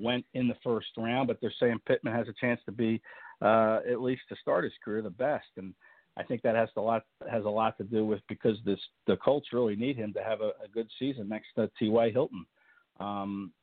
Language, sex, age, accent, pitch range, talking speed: English, male, 50-69, American, 105-125 Hz, 240 wpm